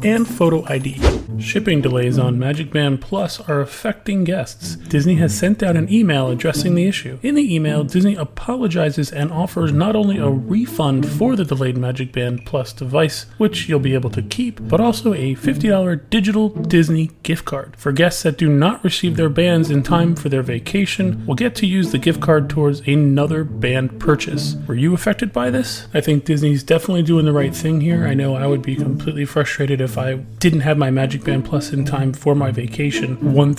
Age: 30-49